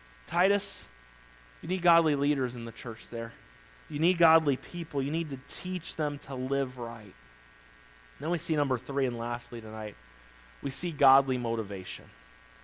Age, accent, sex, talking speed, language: 40-59, American, male, 155 wpm, English